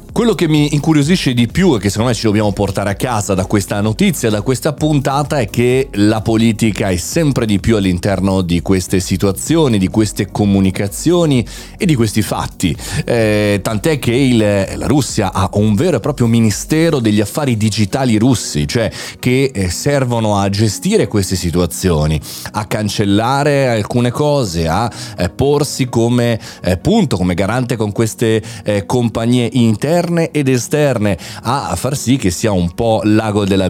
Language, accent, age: Italian, native, 30-49